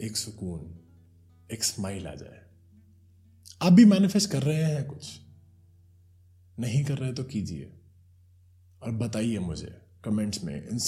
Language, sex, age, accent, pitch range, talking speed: Hindi, male, 20-39, native, 90-130 Hz, 120 wpm